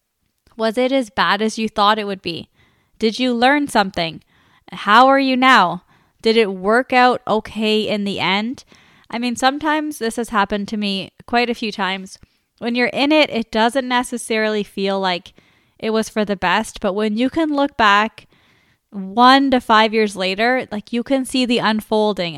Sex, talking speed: female, 185 wpm